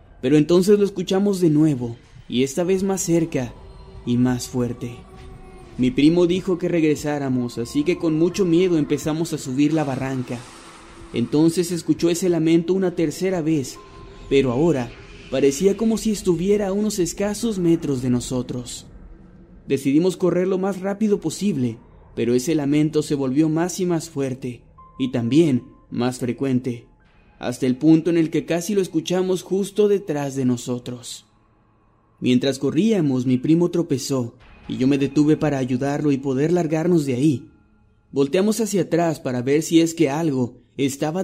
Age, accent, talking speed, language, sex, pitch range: 30-49, Mexican, 155 wpm, Spanish, male, 125-175 Hz